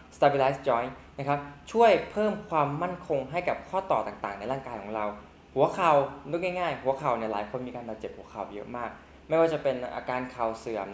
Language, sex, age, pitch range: Thai, male, 20-39, 110-165 Hz